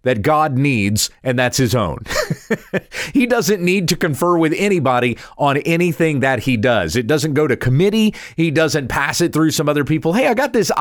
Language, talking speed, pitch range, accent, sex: English, 200 wpm, 130-180 Hz, American, male